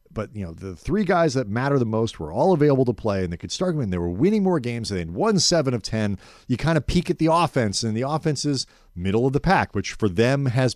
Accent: American